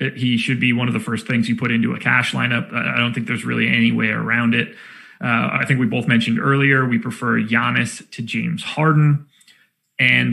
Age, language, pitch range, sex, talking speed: 30-49, English, 135-180 Hz, male, 215 wpm